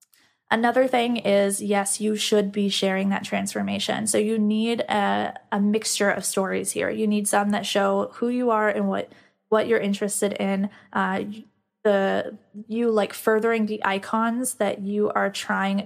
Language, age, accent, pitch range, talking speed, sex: English, 10-29, American, 200-220 Hz, 165 wpm, female